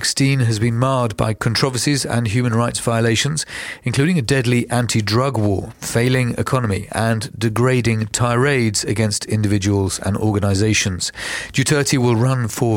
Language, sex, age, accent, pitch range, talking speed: English, male, 40-59, British, 110-140 Hz, 125 wpm